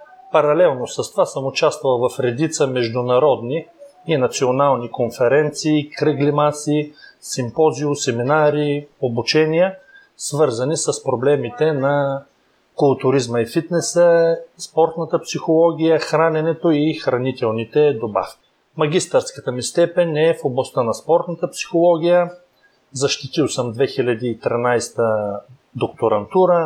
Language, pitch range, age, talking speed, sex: Bulgarian, 130-165 Hz, 30-49, 95 wpm, male